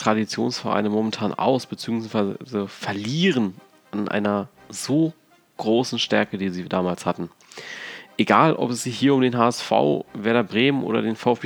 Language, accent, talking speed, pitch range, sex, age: German, German, 140 wpm, 100-120 Hz, male, 30-49